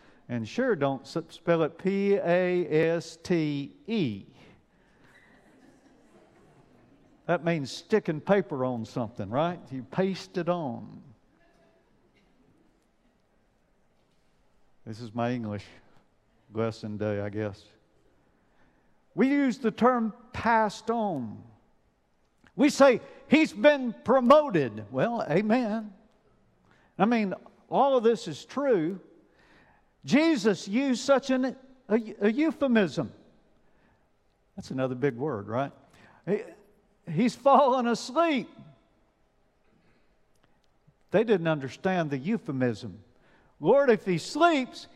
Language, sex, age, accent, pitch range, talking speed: English, male, 50-69, American, 155-240 Hz, 90 wpm